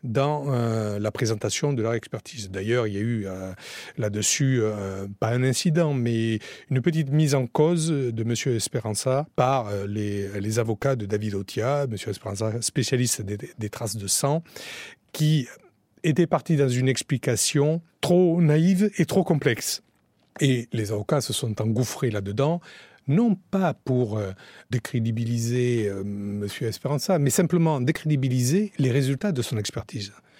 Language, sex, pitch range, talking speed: French, male, 110-145 Hz, 150 wpm